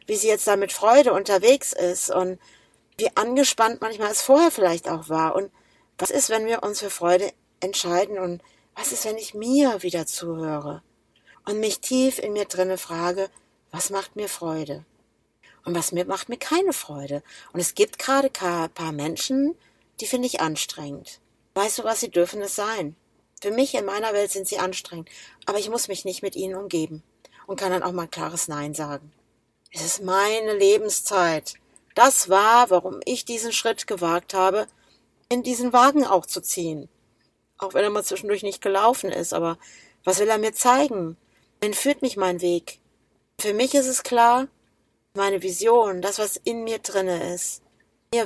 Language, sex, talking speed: German, female, 180 wpm